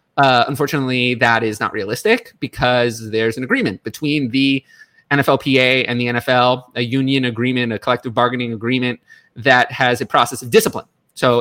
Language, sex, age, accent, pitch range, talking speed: English, male, 30-49, American, 120-140 Hz, 160 wpm